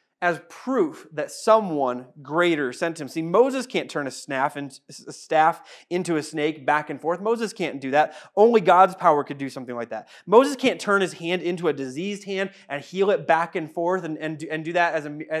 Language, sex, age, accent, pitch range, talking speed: English, male, 30-49, American, 155-210 Hz, 190 wpm